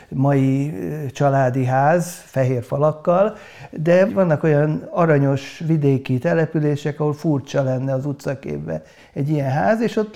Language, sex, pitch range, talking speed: Hungarian, male, 135-170 Hz, 125 wpm